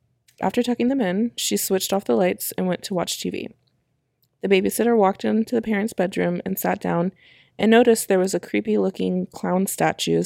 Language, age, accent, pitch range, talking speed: English, 20-39, American, 165-205 Hz, 185 wpm